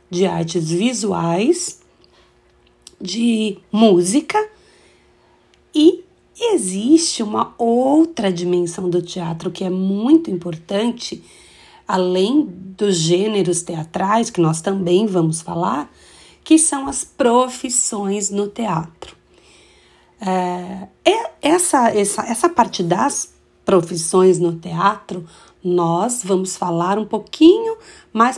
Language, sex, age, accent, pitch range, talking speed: Portuguese, female, 40-59, Brazilian, 180-265 Hz, 95 wpm